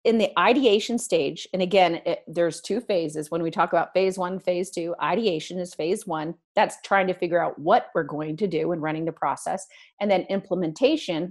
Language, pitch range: English, 170-220 Hz